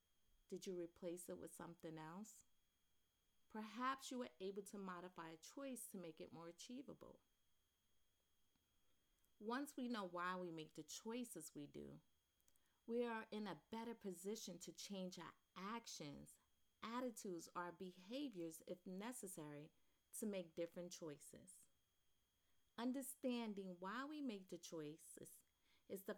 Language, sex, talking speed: English, female, 130 wpm